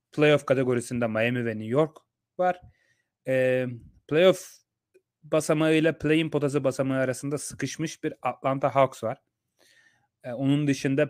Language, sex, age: Turkish, male, 30-49